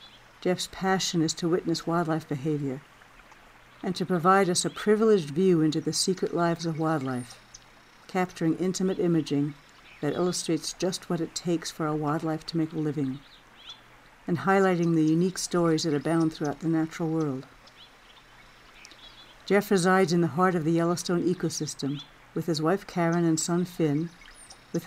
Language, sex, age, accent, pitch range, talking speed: English, female, 60-79, American, 155-180 Hz, 155 wpm